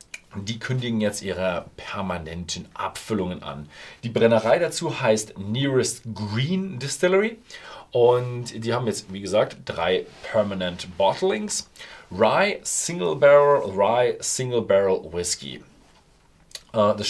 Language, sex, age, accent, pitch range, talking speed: German, male, 40-59, German, 95-130 Hz, 110 wpm